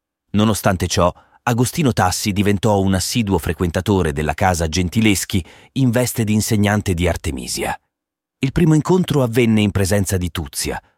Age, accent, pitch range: 30-49, native, 85-105 Hz